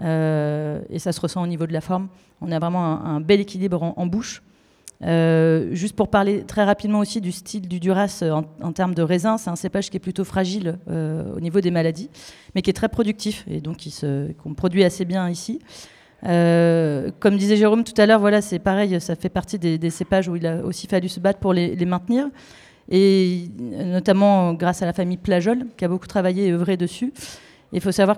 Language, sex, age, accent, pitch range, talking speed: French, female, 30-49, French, 165-200 Hz, 225 wpm